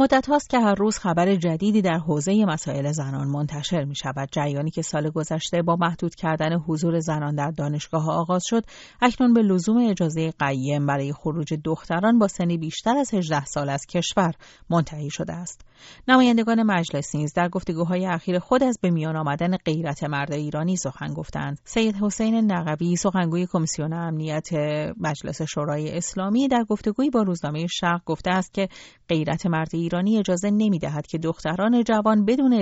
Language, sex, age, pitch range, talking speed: Persian, female, 40-59, 150-200 Hz, 160 wpm